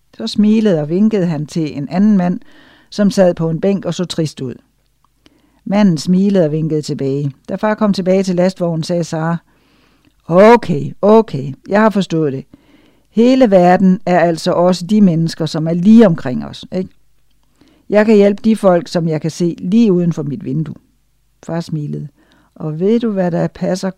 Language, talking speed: Danish, 180 wpm